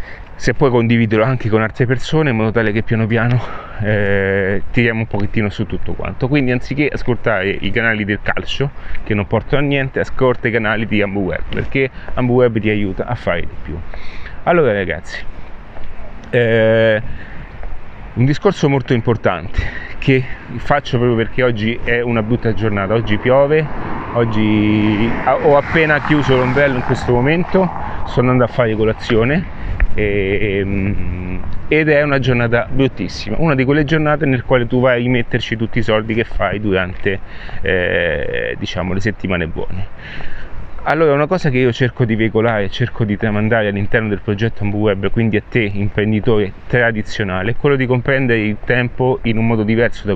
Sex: male